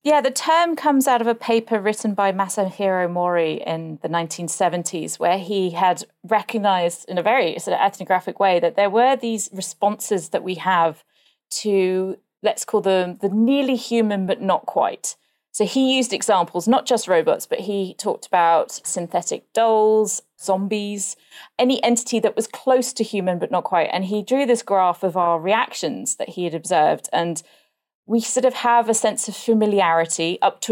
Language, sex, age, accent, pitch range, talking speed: English, female, 30-49, British, 180-225 Hz, 180 wpm